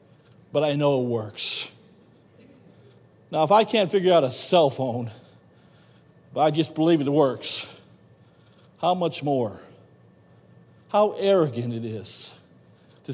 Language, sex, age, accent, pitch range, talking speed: English, male, 50-69, American, 145-225 Hz, 130 wpm